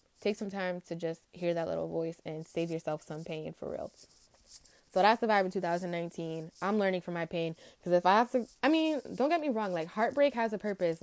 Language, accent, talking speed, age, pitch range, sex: English, American, 235 wpm, 20-39, 175-230 Hz, female